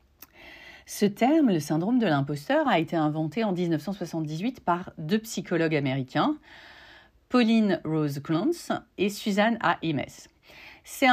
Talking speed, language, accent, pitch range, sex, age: 120 wpm, French, French, 155-235 Hz, female, 40-59